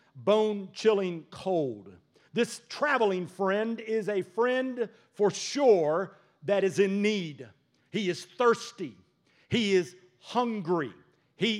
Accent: American